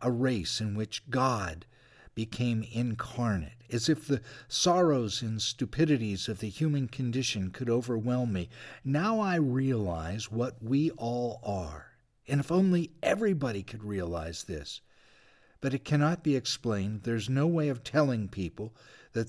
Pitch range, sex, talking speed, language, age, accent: 110-140 Hz, male, 145 wpm, English, 50-69, American